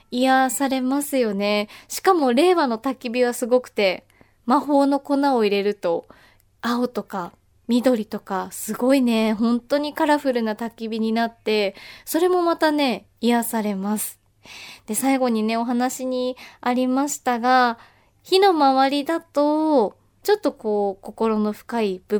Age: 20-39